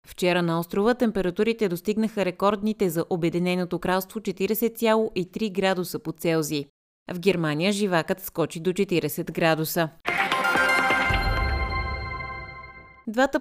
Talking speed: 95 wpm